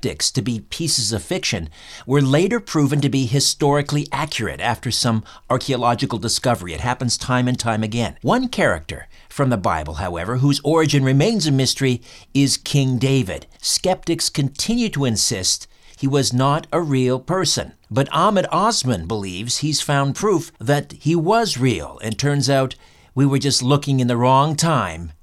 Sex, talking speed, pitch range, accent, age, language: male, 160 wpm, 120-155 Hz, American, 50-69, English